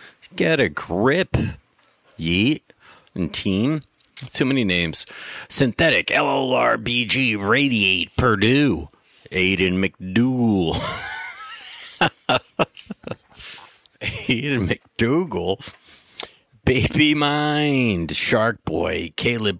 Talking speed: 65 wpm